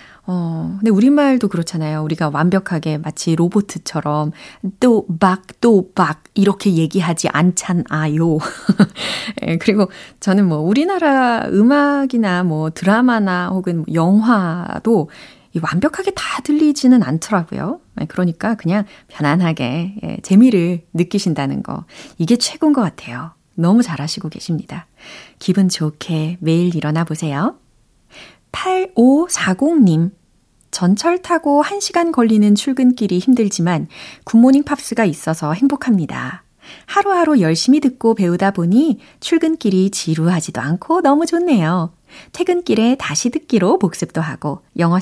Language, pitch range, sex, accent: Korean, 170-255 Hz, female, native